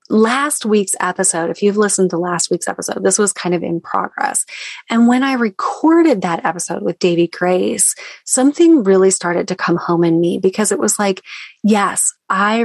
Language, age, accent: English, 30-49, American